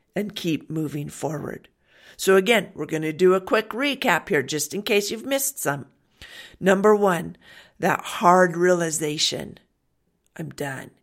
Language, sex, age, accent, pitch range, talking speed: English, female, 50-69, American, 160-195 Hz, 145 wpm